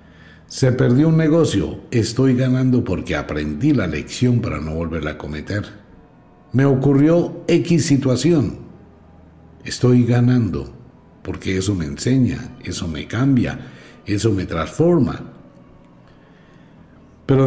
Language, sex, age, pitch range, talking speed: Spanish, male, 60-79, 85-135 Hz, 110 wpm